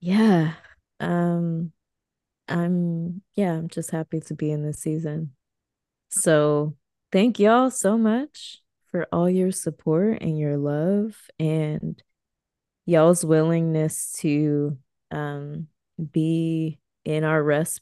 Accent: American